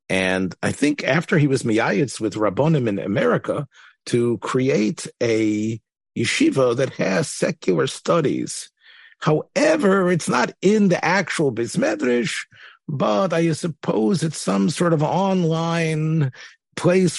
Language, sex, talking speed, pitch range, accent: English, male, 120 wpm, 110-155 Hz, American